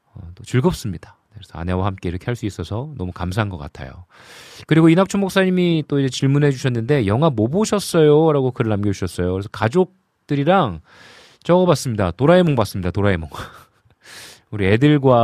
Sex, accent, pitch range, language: male, native, 95-135 Hz, Korean